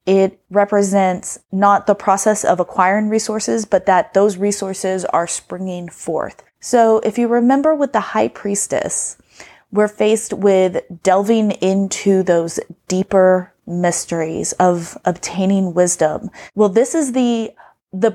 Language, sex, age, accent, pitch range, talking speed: English, female, 30-49, American, 185-225 Hz, 130 wpm